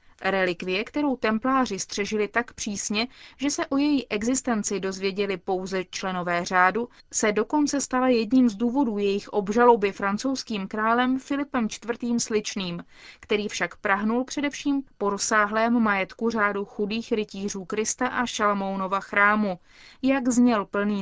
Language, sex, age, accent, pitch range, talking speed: Czech, female, 20-39, native, 200-250 Hz, 125 wpm